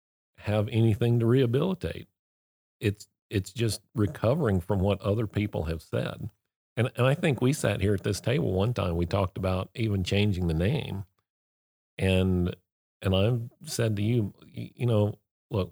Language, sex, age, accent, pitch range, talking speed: English, male, 40-59, American, 85-105 Hz, 160 wpm